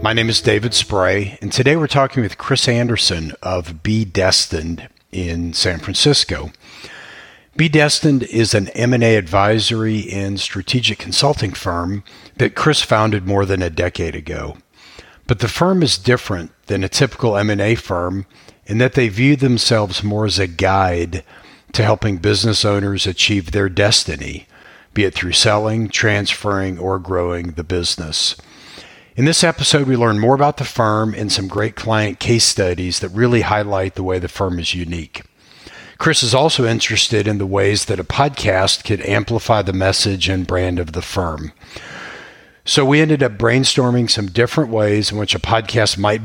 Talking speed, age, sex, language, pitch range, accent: 165 wpm, 50-69, male, English, 95-115 Hz, American